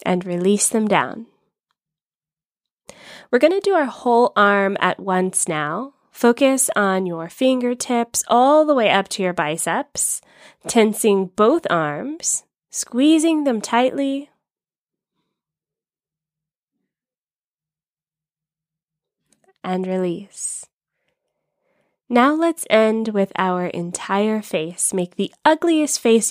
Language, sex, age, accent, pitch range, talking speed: English, female, 20-39, American, 175-245 Hz, 100 wpm